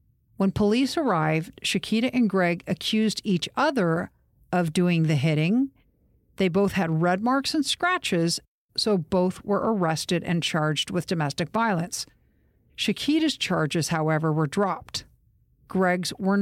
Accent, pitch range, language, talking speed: American, 165-215 Hz, English, 130 wpm